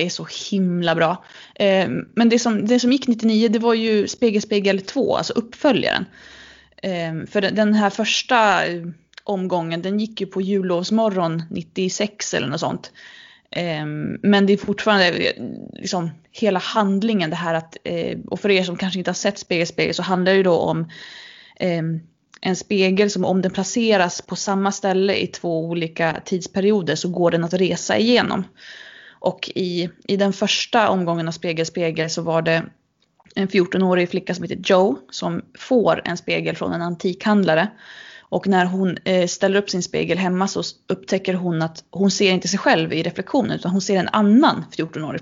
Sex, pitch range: female, 175-205 Hz